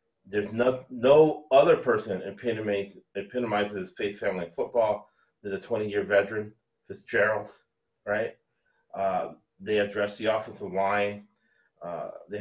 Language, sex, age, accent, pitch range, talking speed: English, male, 30-49, American, 95-125 Hz, 115 wpm